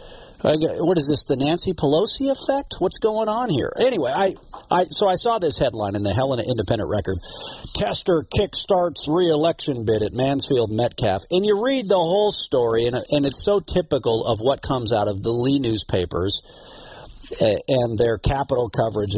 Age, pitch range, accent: 50-69, 115-170 Hz, American